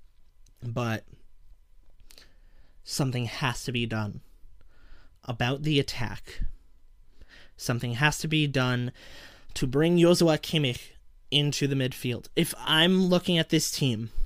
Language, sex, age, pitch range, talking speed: English, male, 20-39, 125-165 Hz, 115 wpm